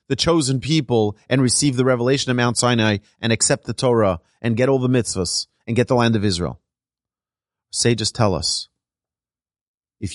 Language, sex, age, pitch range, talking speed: English, male, 30-49, 95-130 Hz, 170 wpm